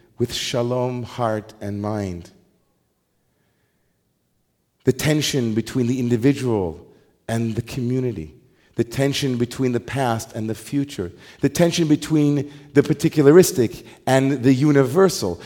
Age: 40-59